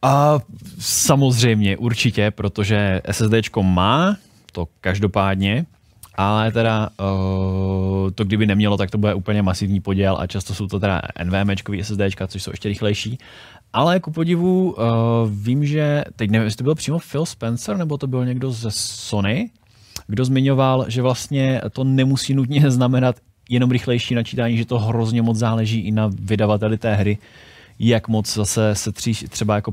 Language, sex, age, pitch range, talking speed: Czech, male, 20-39, 100-115 Hz, 160 wpm